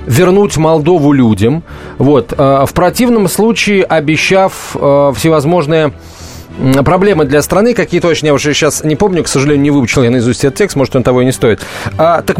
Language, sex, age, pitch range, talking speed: Russian, male, 30-49, 140-180 Hz, 180 wpm